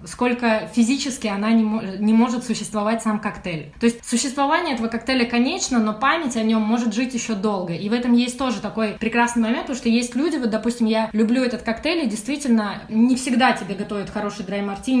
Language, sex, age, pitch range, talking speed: Russian, female, 20-39, 210-245 Hz, 195 wpm